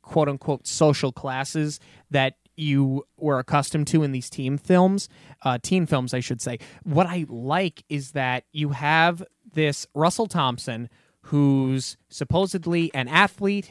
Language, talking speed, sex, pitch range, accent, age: English, 140 wpm, male, 135-170 Hz, American, 20-39